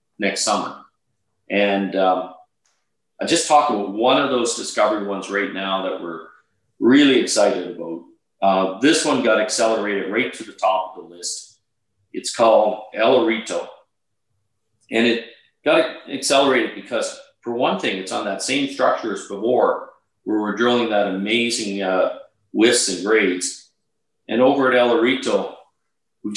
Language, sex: English, male